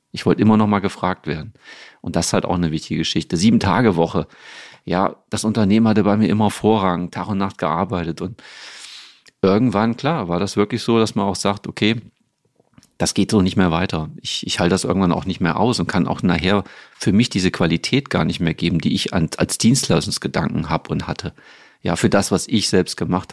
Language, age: German, 40-59